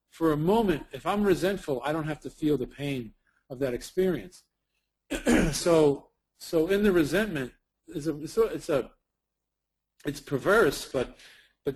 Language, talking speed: English, 150 wpm